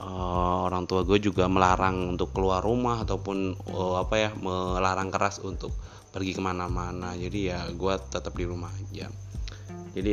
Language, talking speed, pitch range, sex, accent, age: Indonesian, 155 wpm, 95-100 Hz, male, native, 20-39